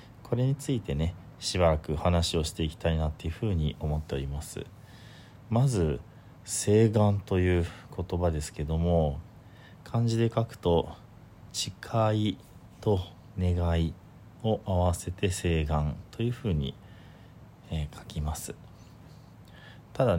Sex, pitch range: male, 85-115 Hz